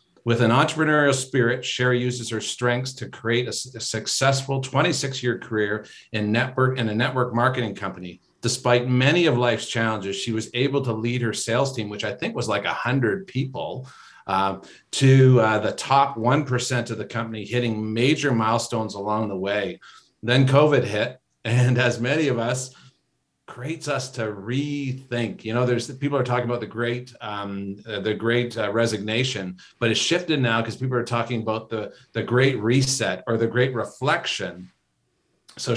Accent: American